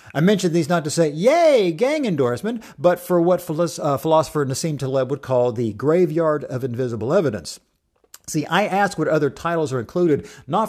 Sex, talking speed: male, 175 wpm